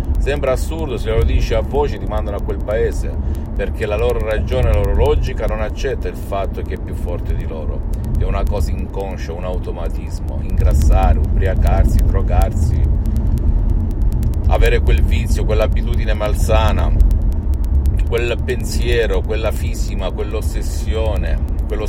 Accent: native